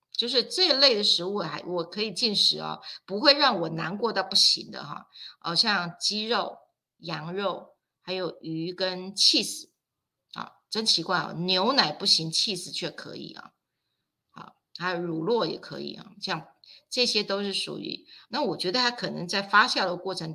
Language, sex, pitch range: Chinese, female, 175-230 Hz